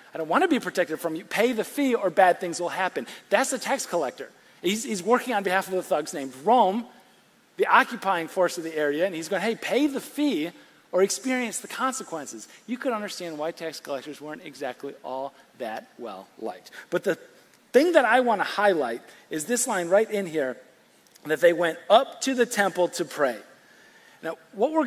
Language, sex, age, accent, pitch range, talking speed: English, male, 40-59, American, 155-225 Hz, 205 wpm